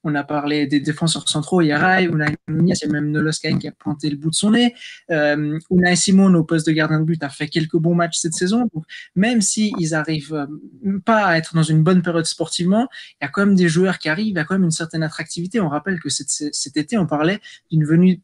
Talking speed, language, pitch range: 245 wpm, French, 155-185 Hz